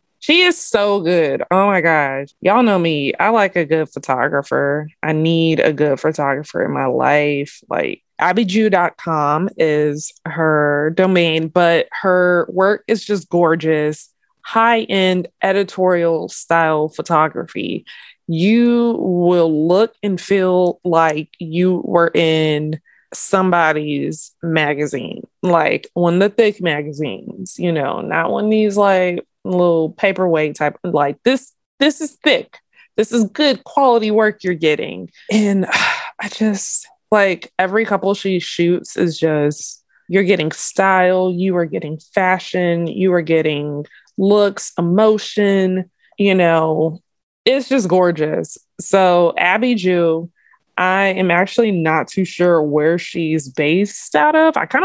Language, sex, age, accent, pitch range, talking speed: English, female, 20-39, American, 160-200 Hz, 130 wpm